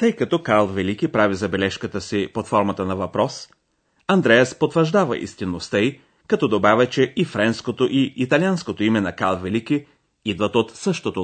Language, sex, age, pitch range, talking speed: Bulgarian, male, 40-59, 100-160 Hz, 150 wpm